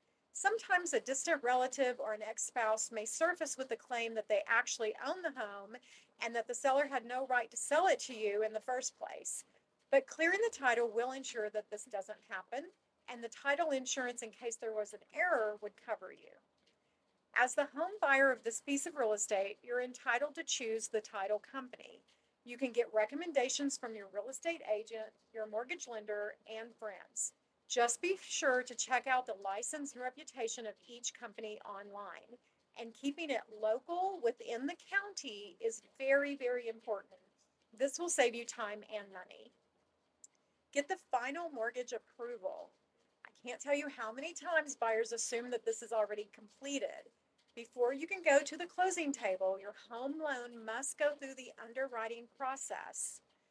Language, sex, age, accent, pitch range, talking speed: English, female, 40-59, American, 220-285 Hz, 175 wpm